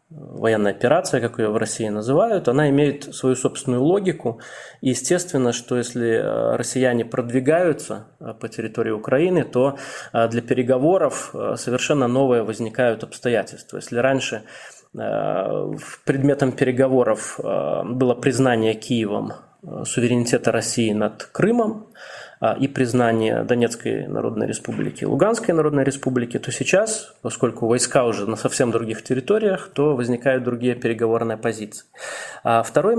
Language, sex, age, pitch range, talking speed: Russian, male, 20-39, 115-140 Hz, 110 wpm